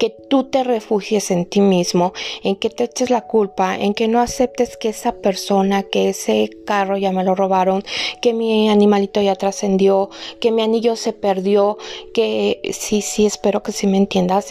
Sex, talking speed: female, 185 wpm